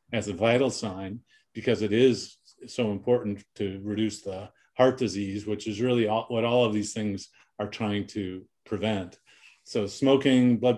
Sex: male